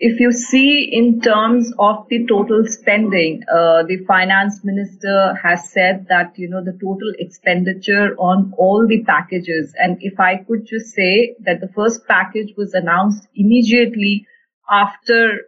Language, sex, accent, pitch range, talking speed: English, female, Indian, 185-230 Hz, 150 wpm